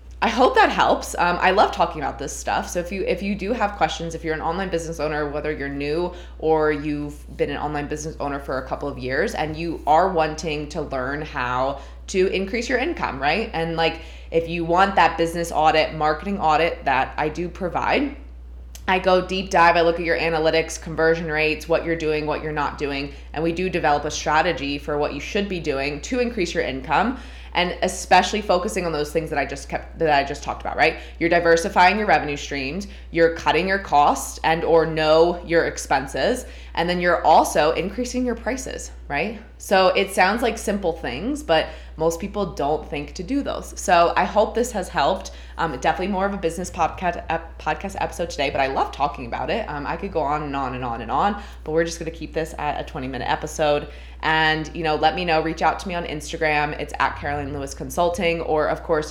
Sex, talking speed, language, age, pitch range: female, 215 wpm, English, 20-39, 150-180 Hz